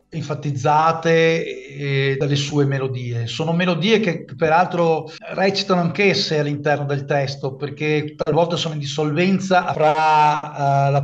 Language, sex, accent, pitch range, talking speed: Italian, male, native, 140-165 Hz, 120 wpm